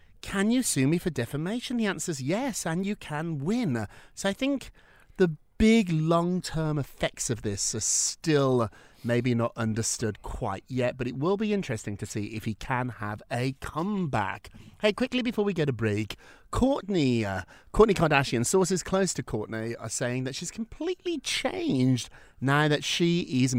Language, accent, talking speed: English, British, 175 wpm